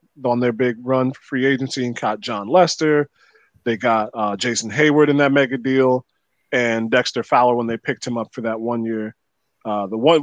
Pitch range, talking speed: 120-155 Hz, 205 wpm